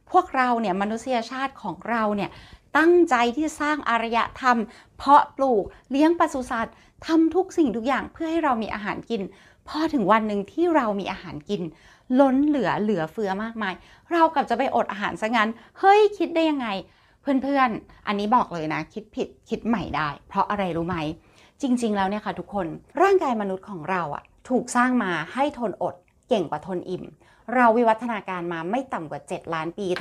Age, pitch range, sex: 20-39, 185-260 Hz, female